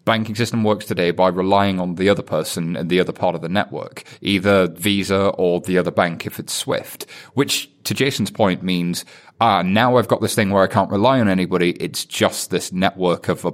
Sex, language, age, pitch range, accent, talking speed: male, English, 30-49, 90-120 Hz, British, 215 wpm